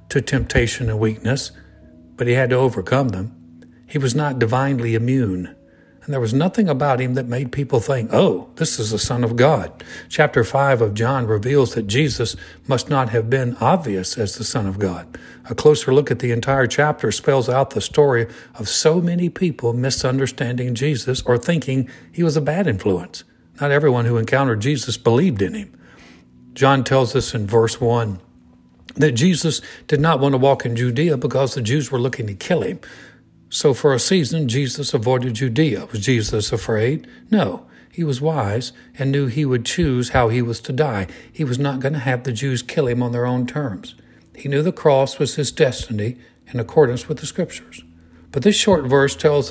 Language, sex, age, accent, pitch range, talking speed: English, male, 60-79, American, 115-145 Hz, 195 wpm